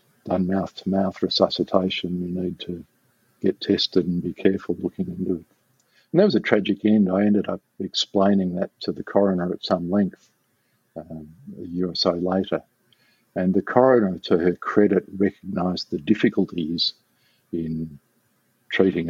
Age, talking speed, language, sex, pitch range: 50-69, 150 wpm, English, male, 90-105 Hz